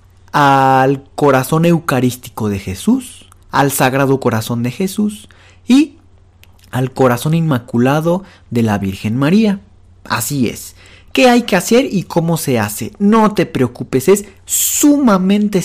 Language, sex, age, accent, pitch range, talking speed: Spanish, male, 40-59, Mexican, 125-190 Hz, 125 wpm